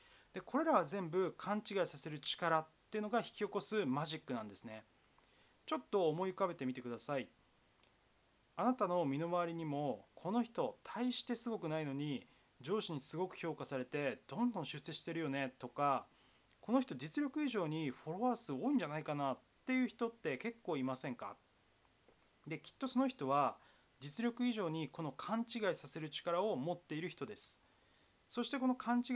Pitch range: 145-210 Hz